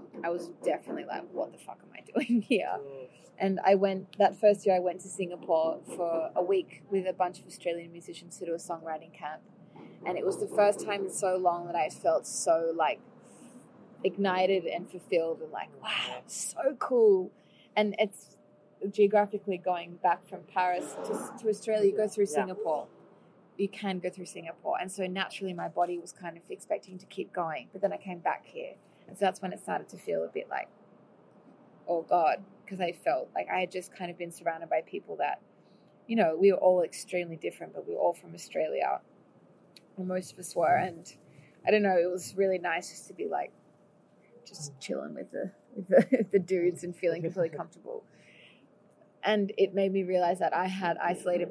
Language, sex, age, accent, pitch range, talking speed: French, female, 20-39, Australian, 175-205 Hz, 200 wpm